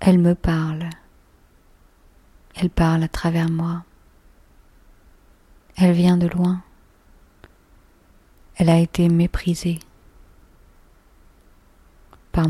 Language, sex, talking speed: French, female, 80 wpm